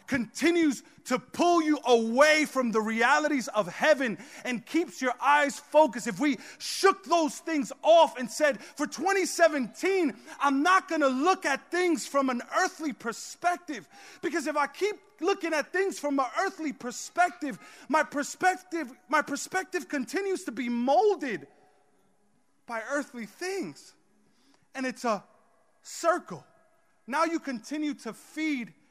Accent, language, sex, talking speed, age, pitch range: American, English, male, 140 wpm, 30-49, 180-300 Hz